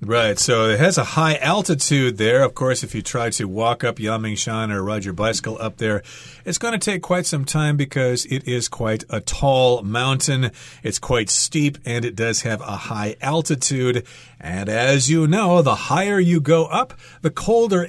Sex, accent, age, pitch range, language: male, American, 40-59, 110-145 Hz, Chinese